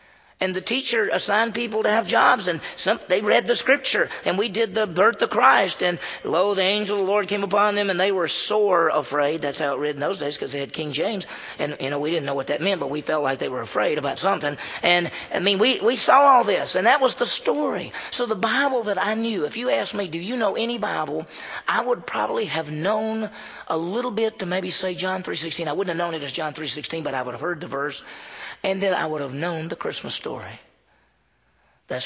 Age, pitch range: 40-59, 165-220 Hz